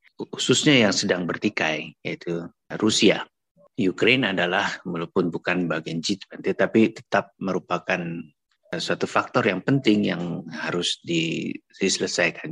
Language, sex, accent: Indonesian, male, native